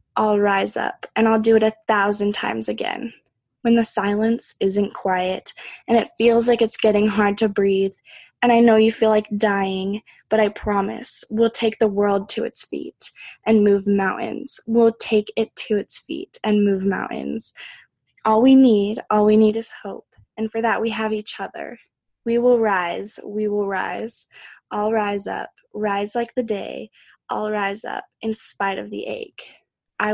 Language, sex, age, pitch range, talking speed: English, female, 10-29, 205-230 Hz, 180 wpm